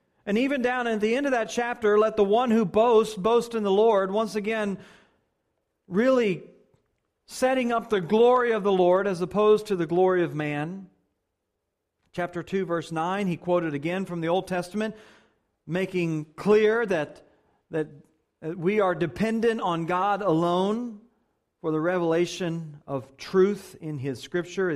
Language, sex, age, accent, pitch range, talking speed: English, male, 40-59, American, 140-195 Hz, 155 wpm